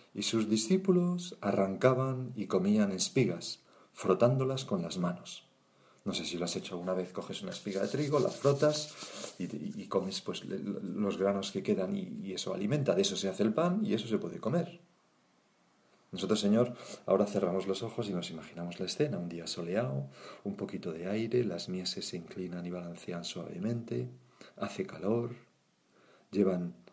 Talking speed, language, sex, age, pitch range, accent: 170 wpm, Spanish, male, 40-59, 100-135 Hz, Spanish